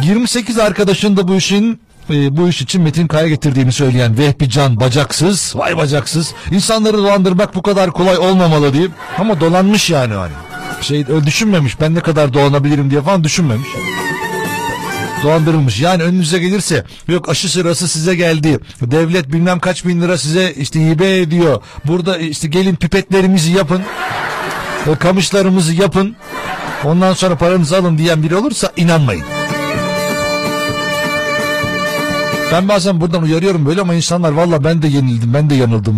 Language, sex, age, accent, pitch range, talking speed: Turkish, male, 60-79, native, 145-190 Hz, 145 wpm